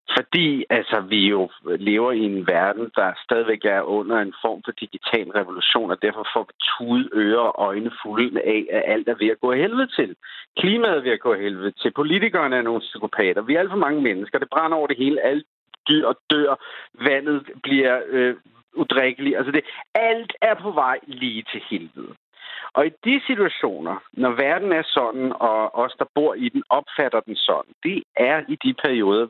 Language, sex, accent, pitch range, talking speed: Danish, male, native, 115-150 Hz, 200 wpm